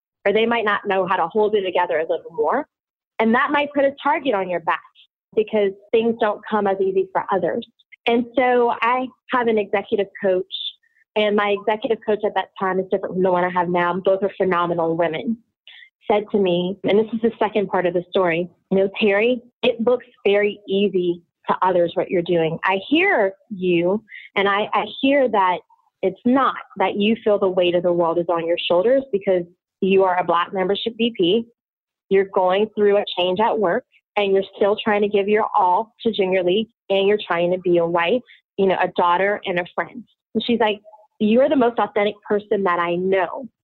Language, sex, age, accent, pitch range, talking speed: English, female, 30-49, American, 185-220 Hz, 210 wpm